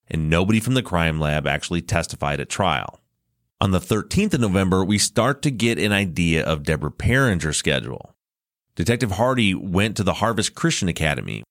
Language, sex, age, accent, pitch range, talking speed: English, male, 30-49, American, 80-115 Hz, 170 wpm